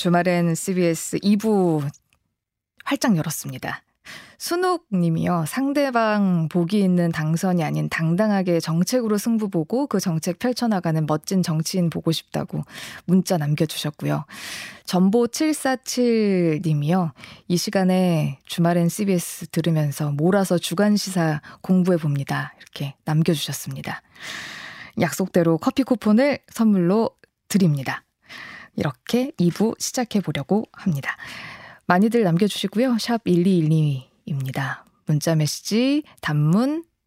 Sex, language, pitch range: female, Korean, 155-215 Hz